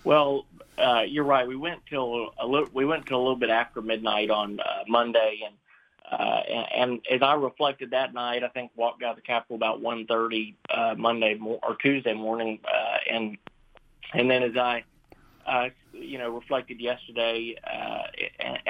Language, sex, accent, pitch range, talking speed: English, male, American, 115-125 Hz, 185 wpm